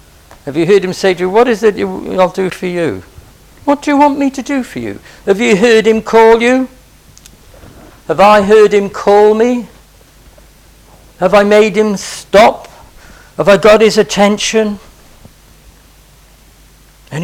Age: 60-79